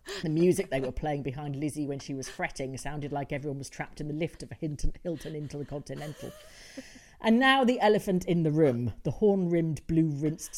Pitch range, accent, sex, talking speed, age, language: 140-180 Hz, British, female, 205 wpm, 40-59, English